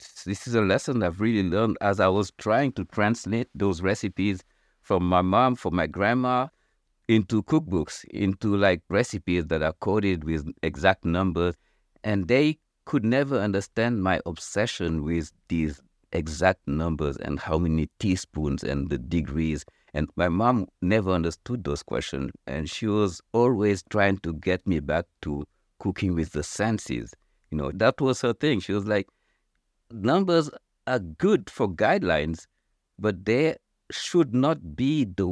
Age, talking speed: 60-79, 155 wpm